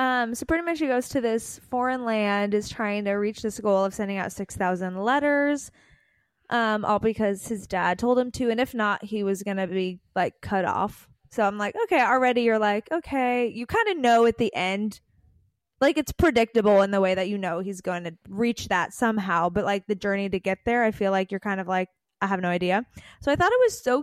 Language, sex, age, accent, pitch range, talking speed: English, female, 20-39, American, 195-255 Hz, 235 wpm